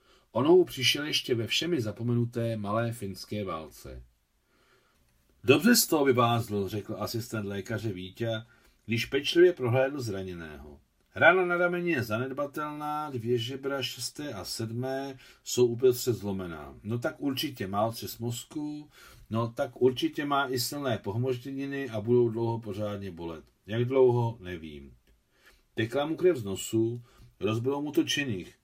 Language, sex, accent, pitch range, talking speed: Czech, male, native, 105-135 Hz, 130 wpm